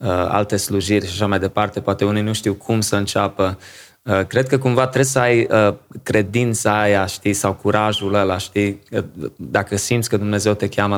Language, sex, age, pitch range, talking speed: Romanian, male, 20-39, 100-110 Hz, 190 wpm